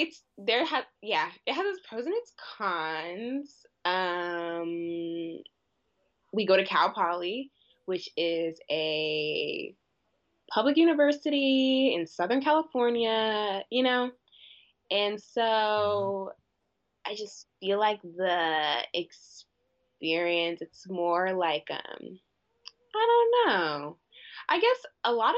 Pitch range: 165-230 Hz